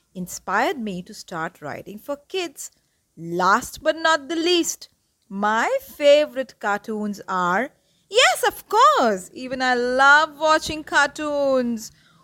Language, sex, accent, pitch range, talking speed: English, female, Indian, 210-325 Hz, 120 wpm